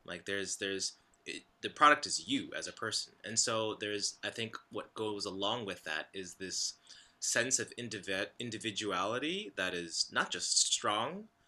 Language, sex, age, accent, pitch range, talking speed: English, male, 30-49, American, 95-115 Hz, 165 wpm